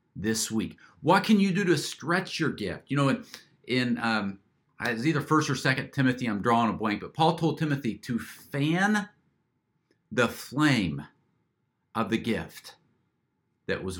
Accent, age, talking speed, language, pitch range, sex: American, 50-69, 160 wpm, English, 100-145 Hz, male